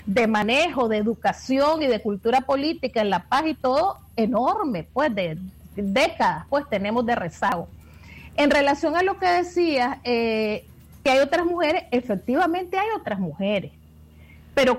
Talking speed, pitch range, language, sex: 150 wpm, 230-290 Hz, Spanish, female